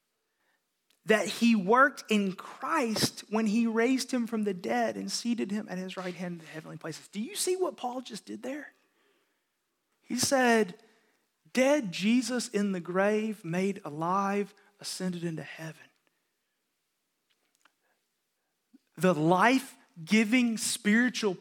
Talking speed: 130 wpm